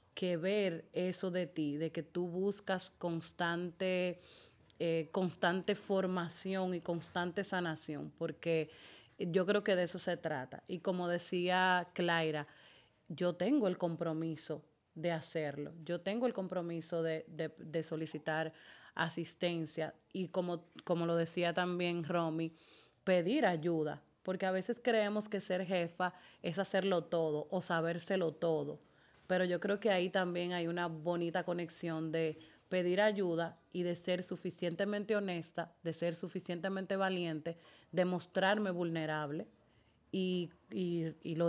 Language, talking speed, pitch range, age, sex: Spanish, 135 wpm, 165-190 Hz, 30-49, female